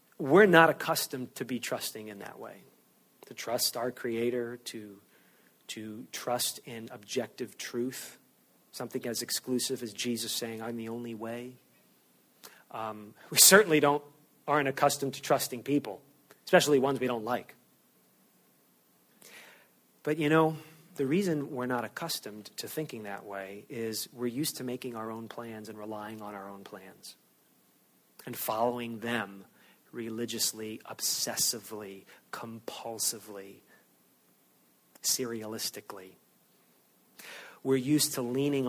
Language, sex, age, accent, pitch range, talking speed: English, male, 40-59, American, 115-135 Hz, 125 wpm